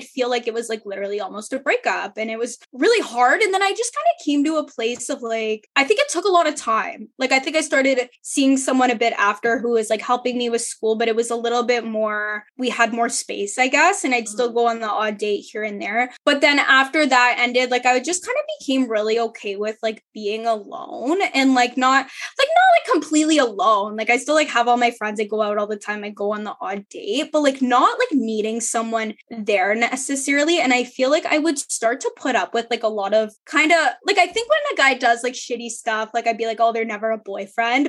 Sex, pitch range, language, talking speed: female, 220-285 Hz, English, 265 wpm